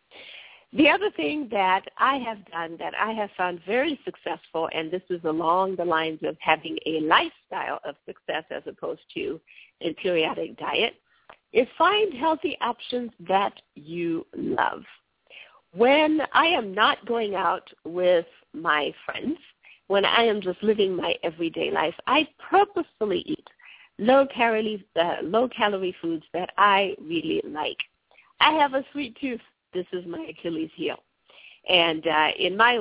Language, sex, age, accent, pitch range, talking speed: English, female, 50-69, American, 175-245 Hz, 145 wpm